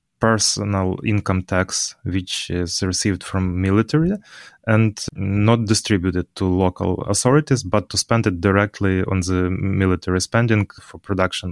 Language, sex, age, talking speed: English, male, 20-39, 130 wpm